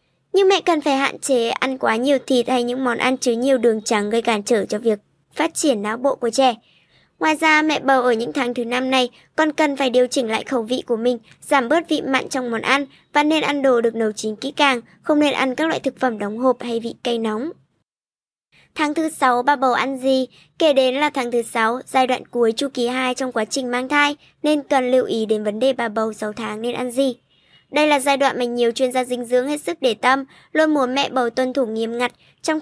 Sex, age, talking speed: male, 20-39, 255 wpm